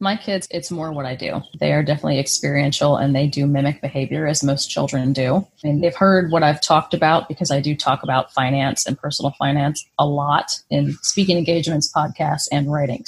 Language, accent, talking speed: English, American, 200 wpm